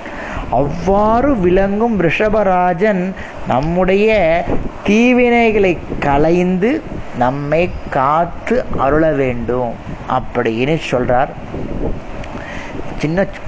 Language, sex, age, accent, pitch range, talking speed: Tamil, male, 20-39, native, 150-215 Hz, 60 wpm